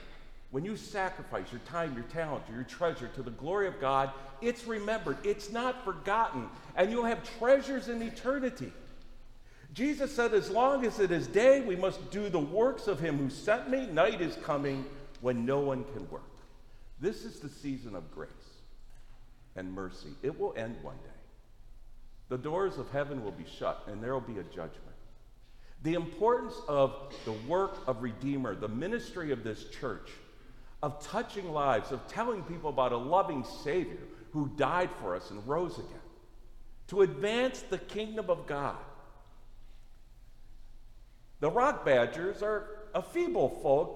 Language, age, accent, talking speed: English, 50-69, American, 160 wpm